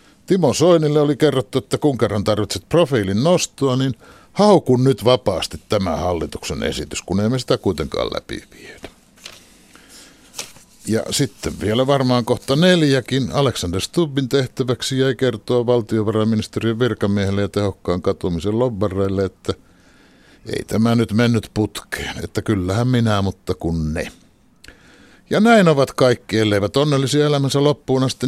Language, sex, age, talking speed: Finnish, male, 60-79, 125 wpm